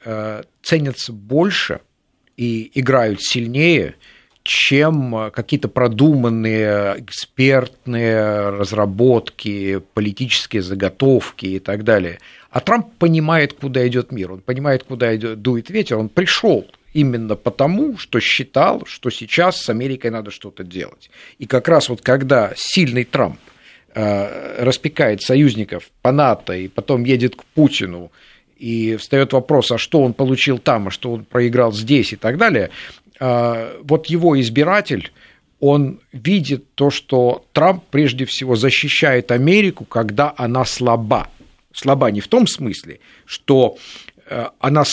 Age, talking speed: 50-69, 125 wpm